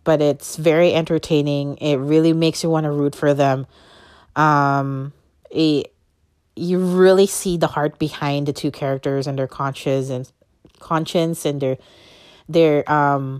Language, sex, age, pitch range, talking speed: English, female, 30-49, 145-190 Hz, 150 wpm